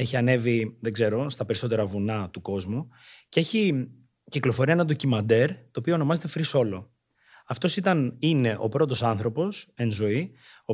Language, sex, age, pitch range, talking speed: Greek, male, 30-49, 115-155 Hz, 150 wpm